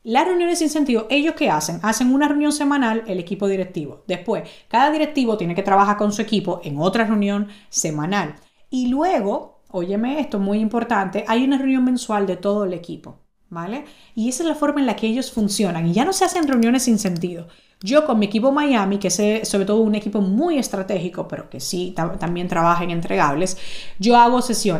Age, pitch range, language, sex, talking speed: 30-49, 195-250 Hz, Spanish, female, 205 wpm